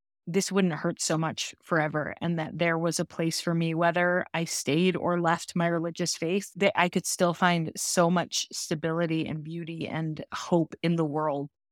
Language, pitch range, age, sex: English, 160-195 Hz, 30-49, female